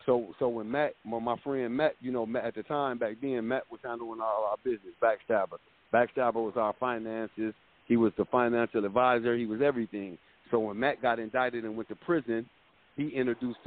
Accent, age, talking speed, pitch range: American, 50-69, 200 wpm, 110-125 Hz